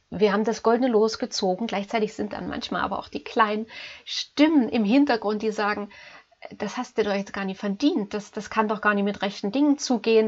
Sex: female